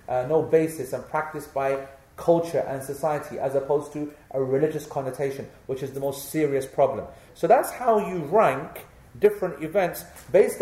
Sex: male